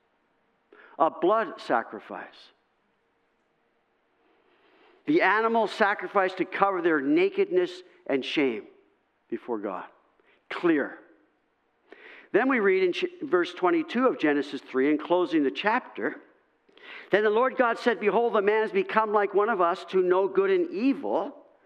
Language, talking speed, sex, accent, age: English, 130 wpm, male, American, 50-69